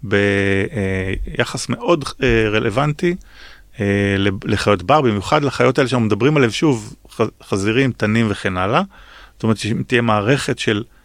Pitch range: 95-120 Hz